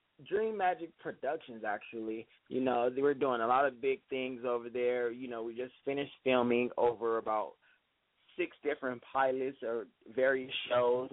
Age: 20-39